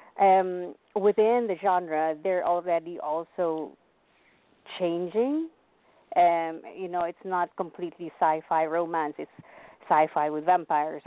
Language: English